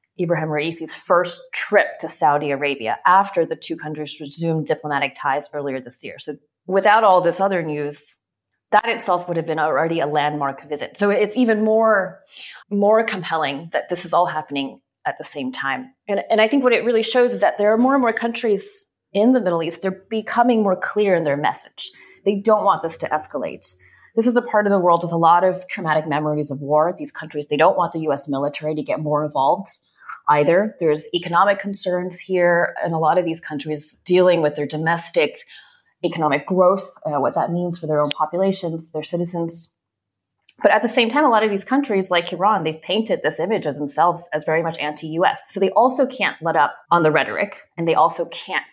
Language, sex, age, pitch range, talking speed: English, female, 30-49, 155-200 Hz, 210 wpm